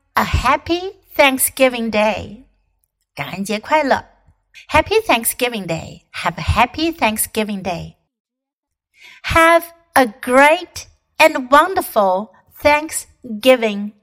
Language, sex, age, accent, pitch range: Chinese, female, 60-79, American, 215-290 Hz